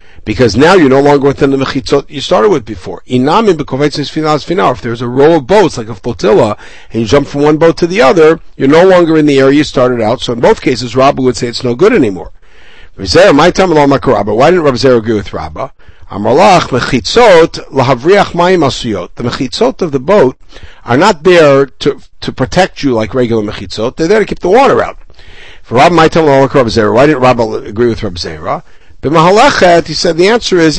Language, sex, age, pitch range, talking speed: English, male, 60-79, 125-165 Hz, 175 wpm